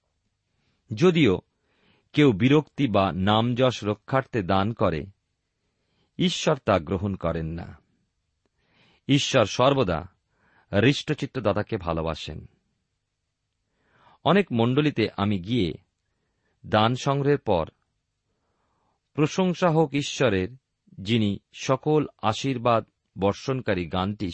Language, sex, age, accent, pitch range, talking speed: Bengali, male, 50-69, native, 100-155 Hz, 80 wpm